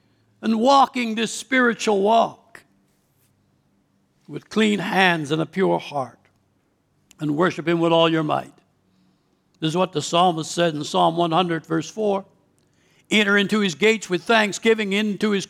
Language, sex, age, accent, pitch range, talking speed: English, male, 60-79, American, 170-225 Hz, 145 wpm